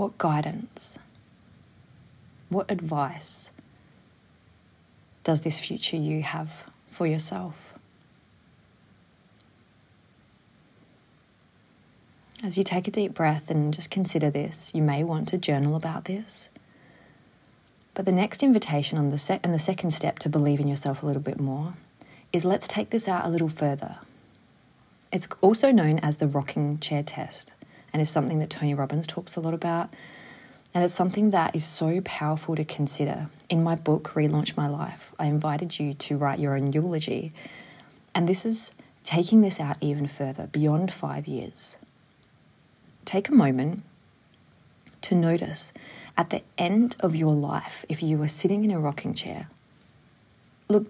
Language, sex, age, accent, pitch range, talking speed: English, female, 30-49, Australian, 145-180 Hz, 150 wpm